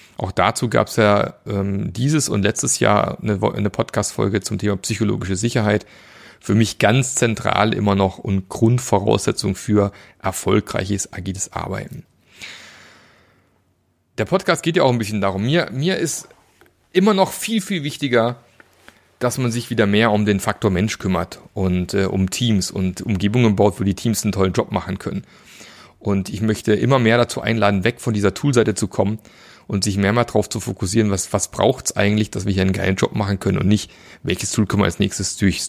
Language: German